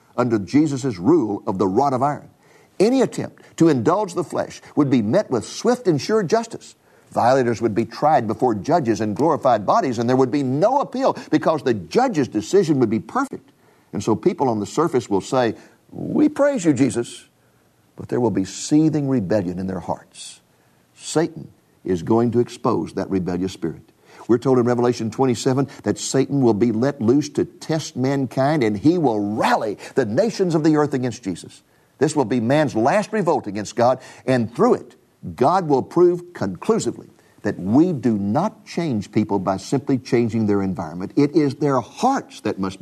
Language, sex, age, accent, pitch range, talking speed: English, male, 50-69, American, 105-150 Hz, 180 wpm